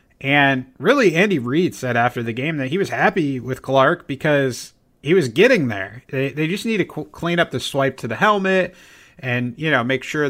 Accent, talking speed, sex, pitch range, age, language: American, 210 wpm, male, 115-145 Hz, 30-49, English